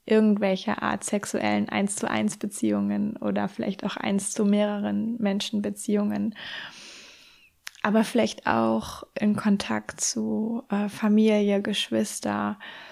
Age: 20-39